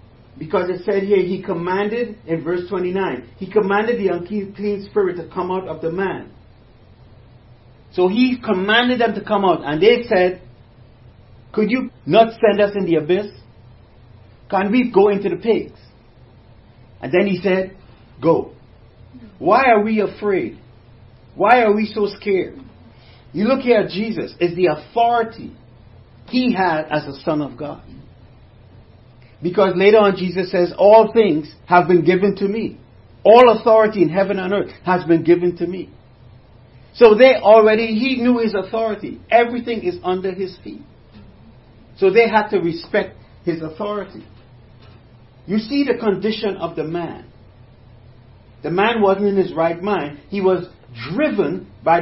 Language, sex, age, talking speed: English, male, 50-69, 155 wpm